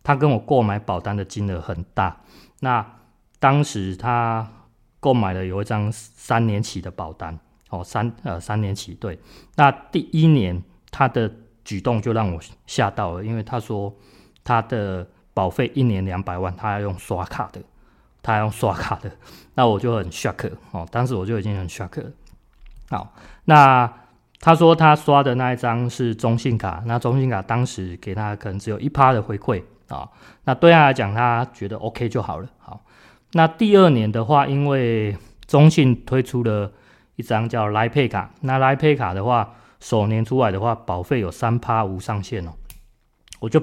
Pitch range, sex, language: 100-130 Hz, male, Chinese